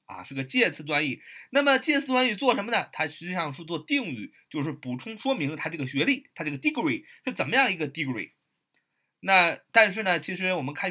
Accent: native